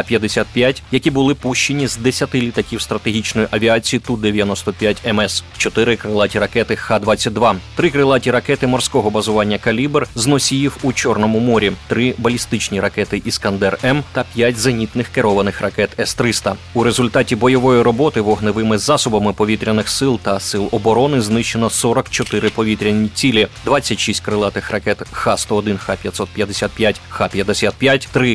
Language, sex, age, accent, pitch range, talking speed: Ukrainian, male, 30-49, native, 105-125 Hz, 120 wpm